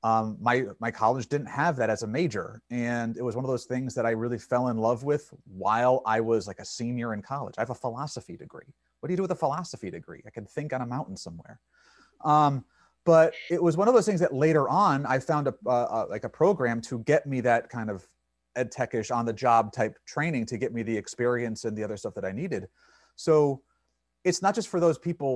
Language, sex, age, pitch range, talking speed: English, male, 30-49, 110-150 Hz, 245 wpm